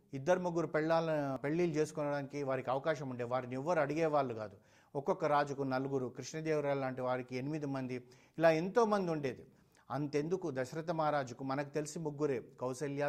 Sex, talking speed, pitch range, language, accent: male, 140 wpm, 130-155 Hz, Telugu, native